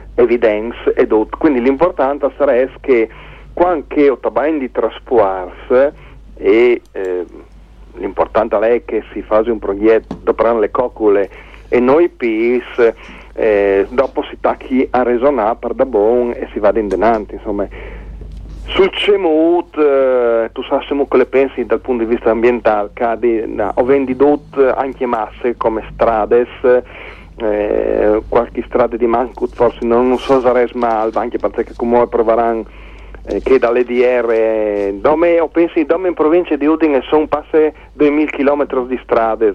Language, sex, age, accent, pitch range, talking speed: Italian, male, 40-59, native, 120-165 Hz, 145 wpm